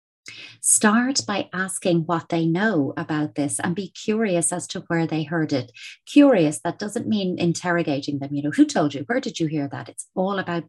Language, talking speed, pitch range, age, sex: English, 200 wpm, 155-195 Hz, 30-49, female